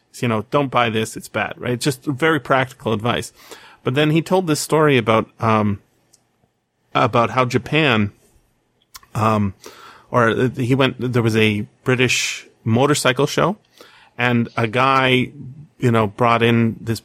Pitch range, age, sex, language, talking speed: 105-130 Hz, 30-49, male, English, 150 wpm